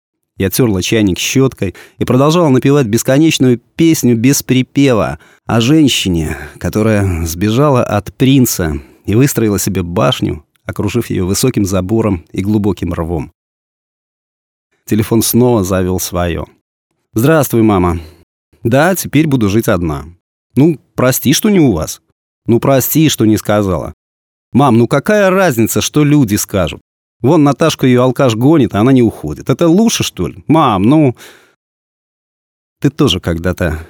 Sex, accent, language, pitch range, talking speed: male, native, Russian, 95-130 Hz, 135 wpm